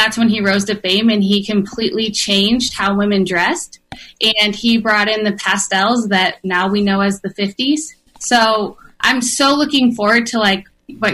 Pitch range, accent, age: 200-240 Hz, American, 20-39